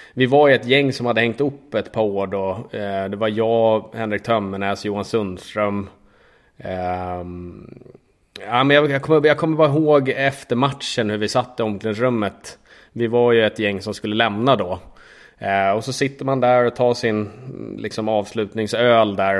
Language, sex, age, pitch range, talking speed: English, male, 20-39, 100-120 Hz, 170 wpm